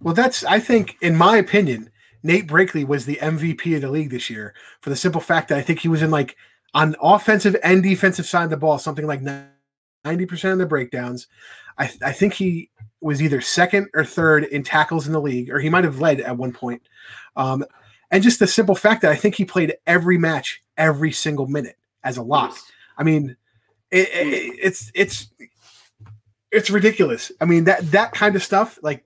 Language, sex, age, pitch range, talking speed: English, male, 30-49, 135-175 Hz, 210 wpm